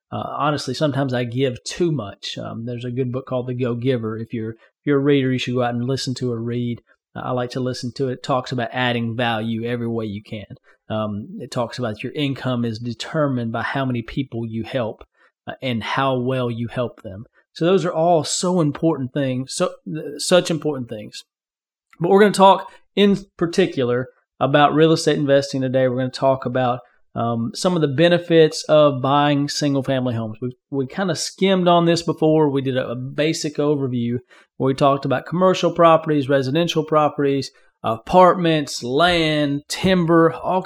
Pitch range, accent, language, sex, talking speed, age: 125-160 Hz, American, English, male, 190 wpm, 30-49